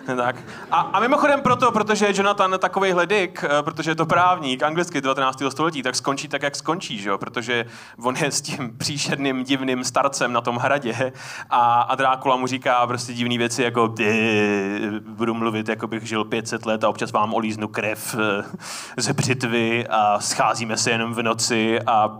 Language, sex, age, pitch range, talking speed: Czech, male, 20-39, 115-170 Hz, 170 wpm